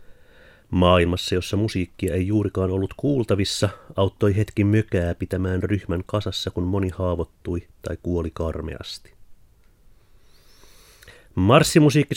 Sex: male